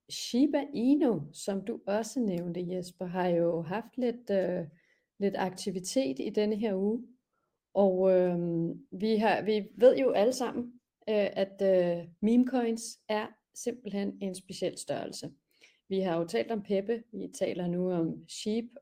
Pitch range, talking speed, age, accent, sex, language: 180-225 Hz, 150 wpm, 30-49, native, female, Danish